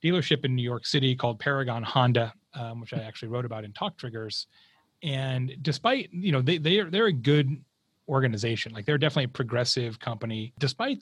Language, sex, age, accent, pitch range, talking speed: English, male, 30-49, American, 125-165 Hz, 190 wpm